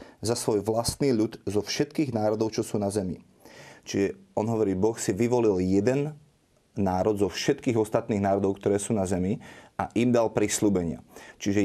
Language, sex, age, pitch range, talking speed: Slovak, male, 30-49, 100-115 Hz, 165 wpm